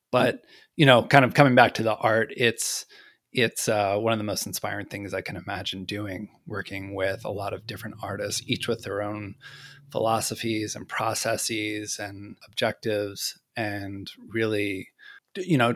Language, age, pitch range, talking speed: English, 30-49, 100-120 Hz, 165 wpm